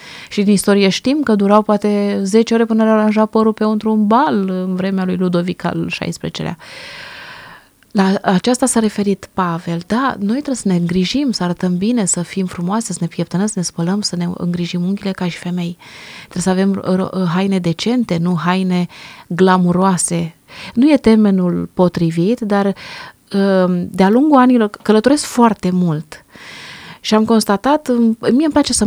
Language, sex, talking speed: Romanian, female, 160 wpm